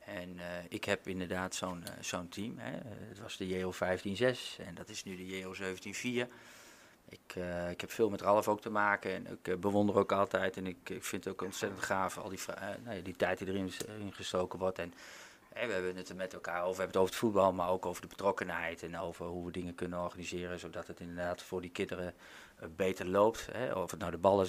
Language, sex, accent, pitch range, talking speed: Dutch, male, Dutch, 90-100 Hz, 240 wpm